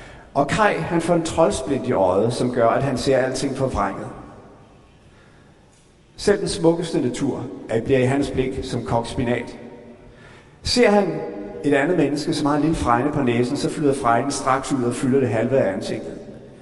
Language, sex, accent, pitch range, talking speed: Danish, male, native, 130-175 Hz, 175 wpm